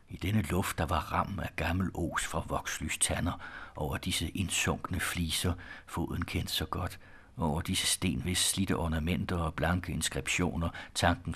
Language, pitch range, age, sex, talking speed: Danish, 85-100 Hz, 60-79, male, 150 wpm